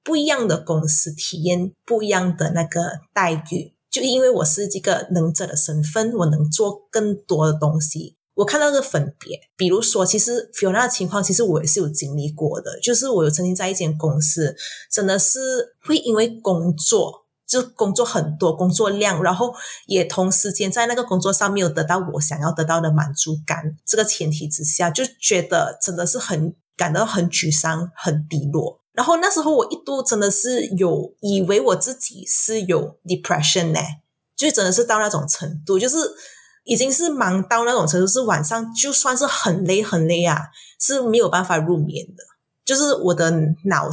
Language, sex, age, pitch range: Chinese, female, 20-39, 160-220 Hz